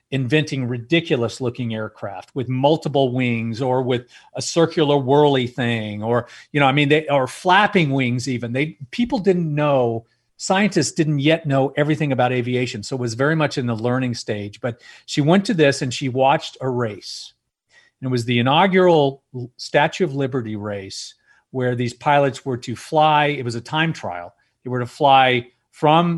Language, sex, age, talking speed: English, male, 40-59, 175 wpm